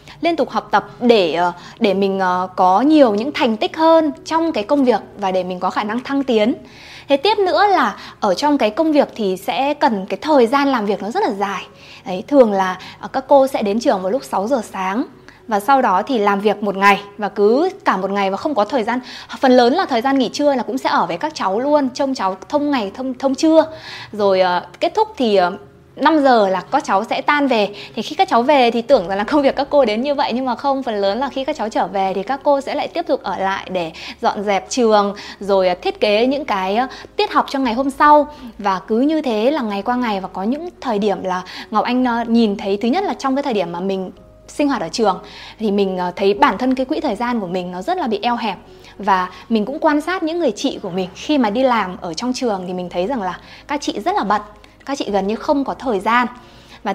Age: 20-39